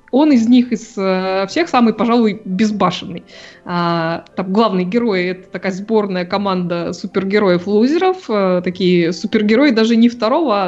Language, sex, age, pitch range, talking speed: Russian, female, 20-39, 180-225 Hz, 120 wpm